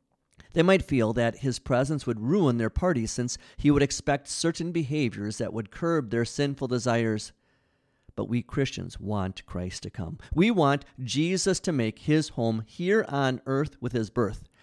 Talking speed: 170 wpm